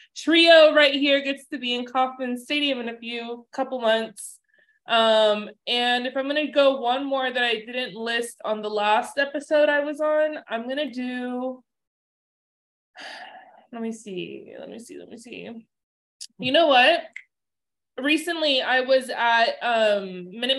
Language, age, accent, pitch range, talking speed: English, 20-39, American, 215-275 Hz, 155 wpm